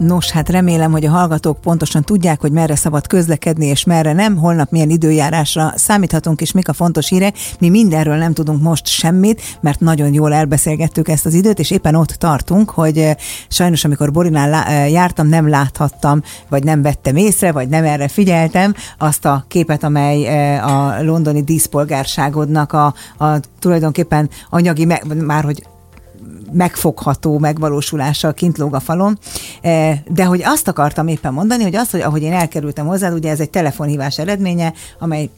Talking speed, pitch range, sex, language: 165 wpm, 145-175 Hz, female, Hungarian